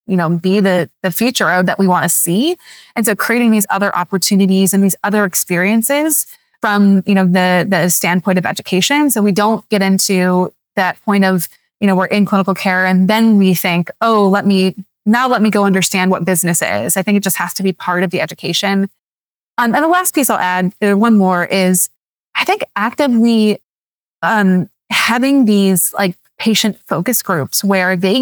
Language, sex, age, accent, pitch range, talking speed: English, female, 20-39, American, 185-225 Hz, 195 wpm